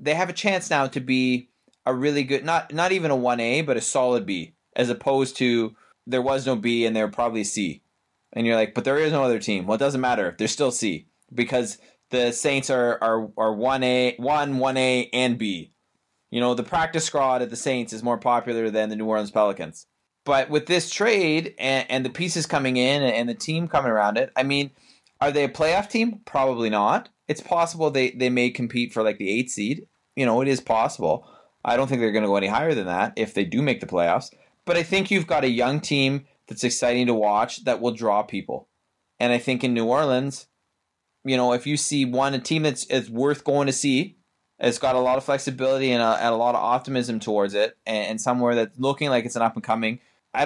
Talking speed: 230 wpm